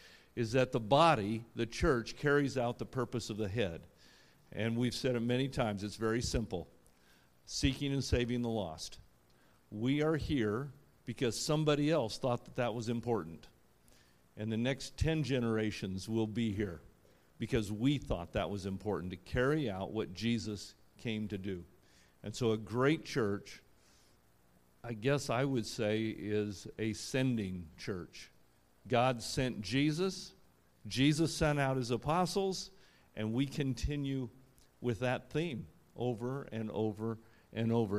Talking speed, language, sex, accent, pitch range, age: 145 wpm, English, male, American, 105-135 Hz, 50-69